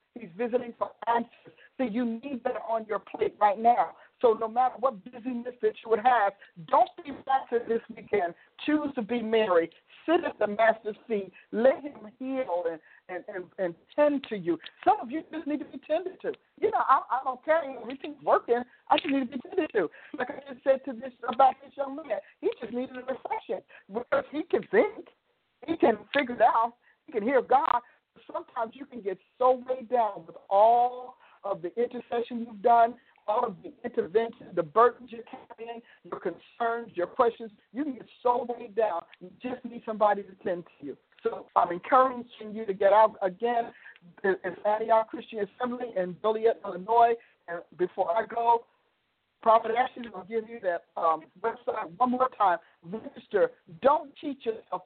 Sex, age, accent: male, 50-69, American